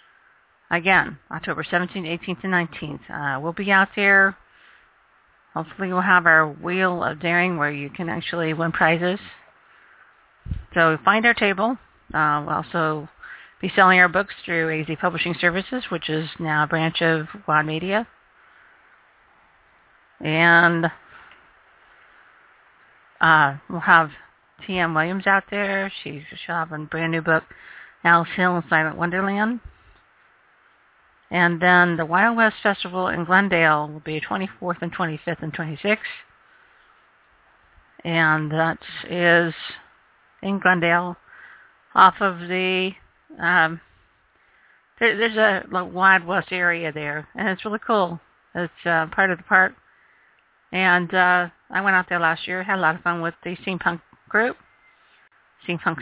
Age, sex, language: 40-59, female, English